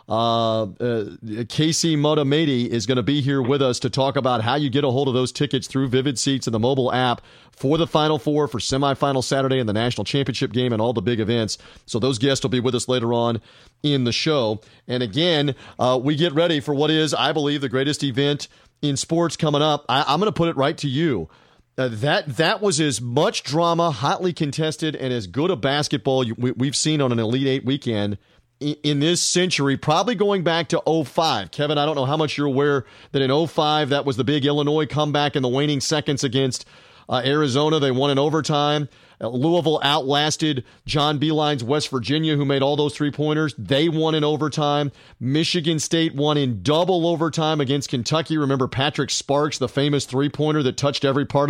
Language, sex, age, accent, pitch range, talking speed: English, male, 40-59, American, 125-150 Hz, 205 wpm